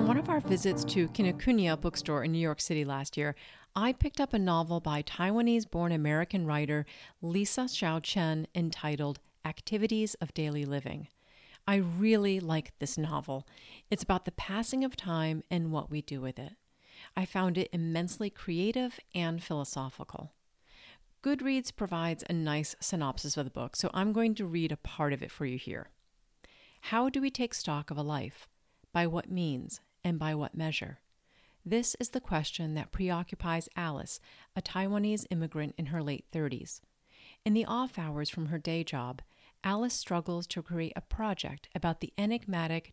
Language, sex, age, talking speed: English, female, 40-59, 170 wpm